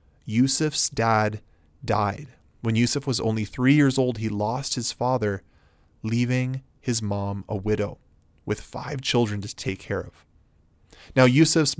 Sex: male